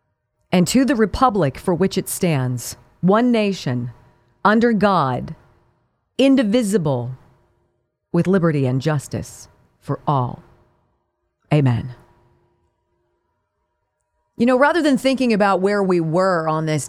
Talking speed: 110 wpm